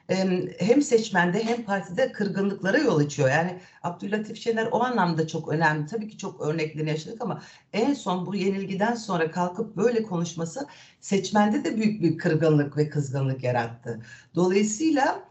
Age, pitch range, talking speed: 60-79, 165-210 Hz, 145 wpm